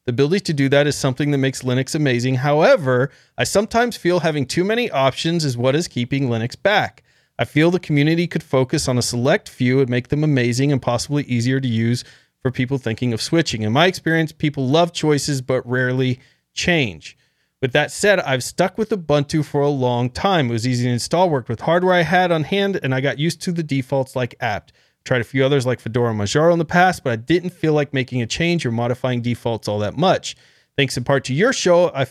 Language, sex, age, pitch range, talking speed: English, male, 30-49, 130-165 Hz, 225 wpm